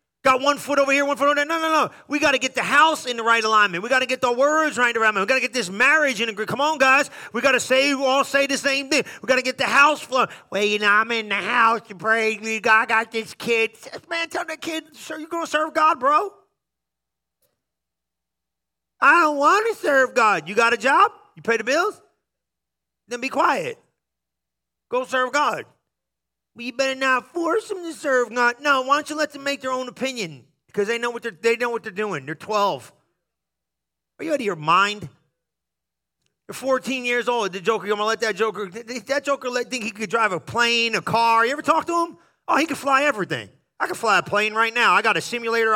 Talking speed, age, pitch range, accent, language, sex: 230 wpm, 30-49, 220-285 Hz, American, English, male